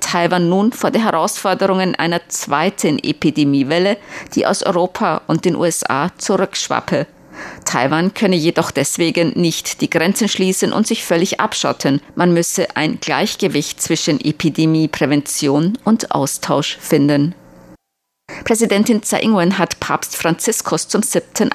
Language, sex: German, female